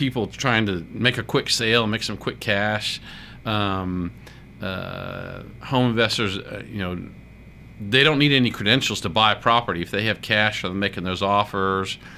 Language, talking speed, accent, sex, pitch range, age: English, 170 wpm, American, male, 95-110 Hz, 50-69